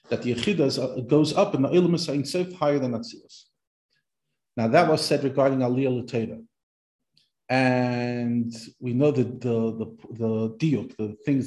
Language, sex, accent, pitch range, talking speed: English, male, Israeli, 115-140 Hz, 165 wpm